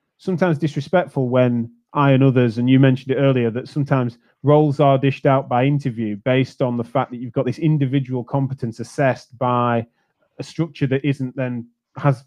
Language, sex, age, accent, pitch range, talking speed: English, male, 30-49, British, 125-155 Hz, 180 wpm